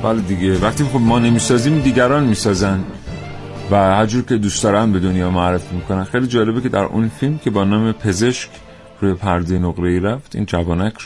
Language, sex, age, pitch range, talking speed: Persian, male, 30-49, 95-115 Hz, 180 wpm